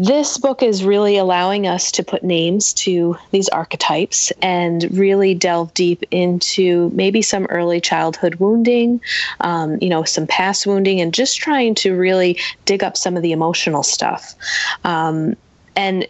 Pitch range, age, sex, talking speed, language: 170-195 Hz, 30-49, female, 155 wpm, English